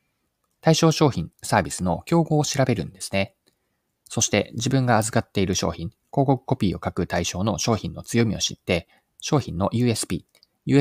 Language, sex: Japanese, male